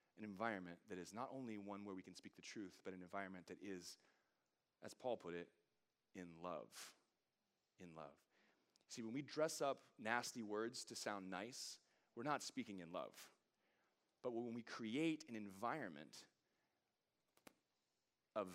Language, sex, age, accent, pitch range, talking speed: English, male, 30-49, American, 95-120 Hz, 150 wpm